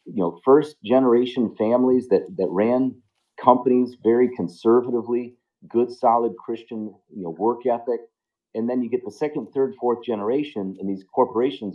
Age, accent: 40-59, American